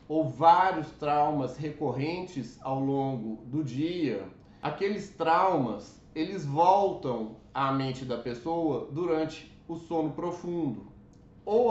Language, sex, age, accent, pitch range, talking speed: Portuguese, male, 30-49, Brazilian, 145-180 Hz, 110 wpm